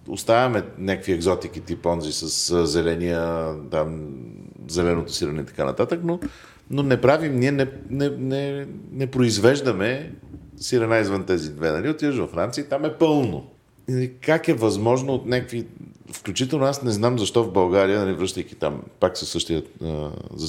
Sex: male